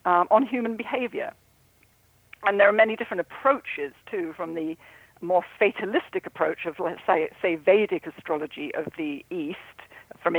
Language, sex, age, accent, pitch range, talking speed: English, female, 50-69, British, 165-220 Hz, 150 wpm